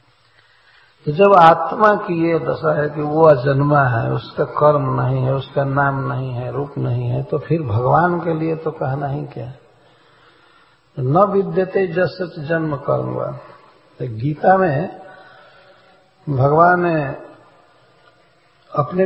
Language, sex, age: English, male, 60-79